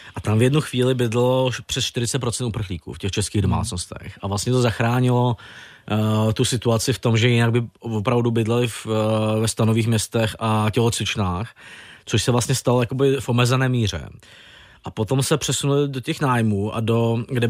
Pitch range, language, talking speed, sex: 110-125 Hz, Czech, 175 wpm, male